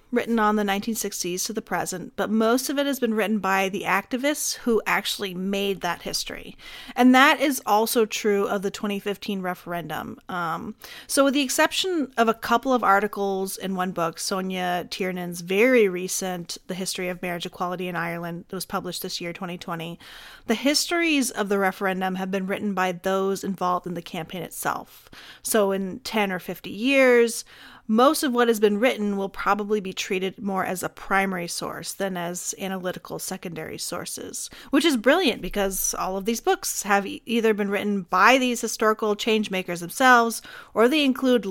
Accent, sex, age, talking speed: American, female, 30-49, 180 wpm